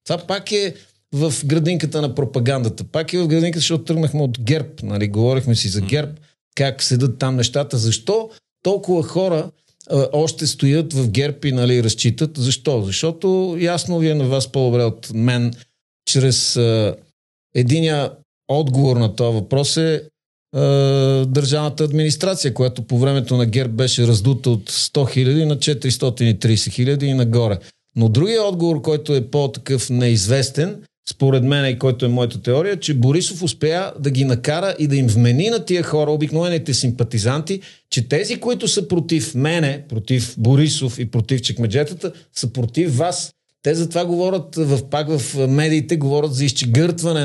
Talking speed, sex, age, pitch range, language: 155 wpm, male, 50-69, 125-155 Hz, Bulgarian